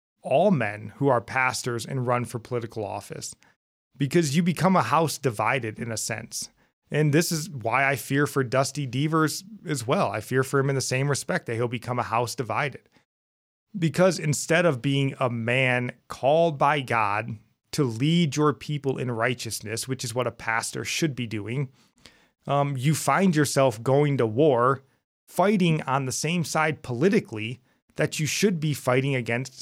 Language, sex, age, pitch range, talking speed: English, male, 30-49, 120-155 Hz, 175 wpm